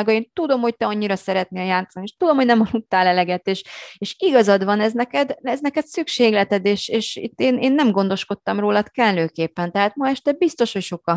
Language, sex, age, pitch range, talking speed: Hungarian, female, 30-49, 160-220 Hz, 200 wpm